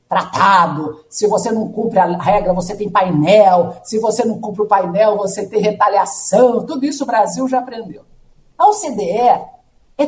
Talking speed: 165 wpm